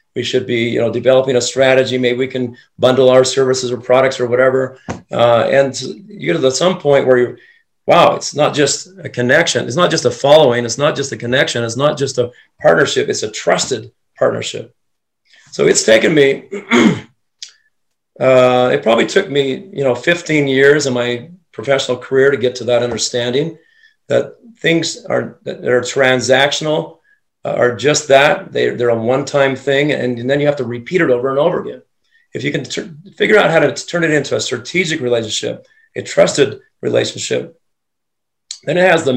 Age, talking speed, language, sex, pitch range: 40-59, 185 wpm, English, male, 125-160 Hz